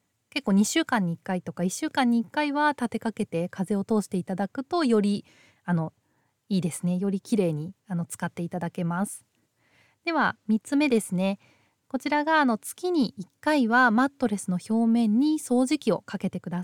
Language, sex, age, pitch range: Japanese, female, 20-39, 185-255 Hz